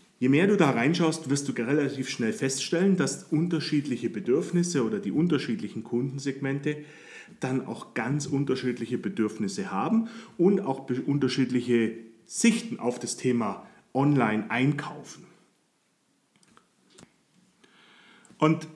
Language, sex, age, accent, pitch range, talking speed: German, male, 40-59, German, 120-165 Hz, 105 wpm